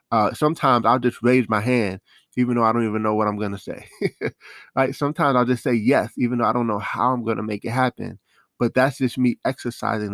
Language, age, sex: English, 20-39, male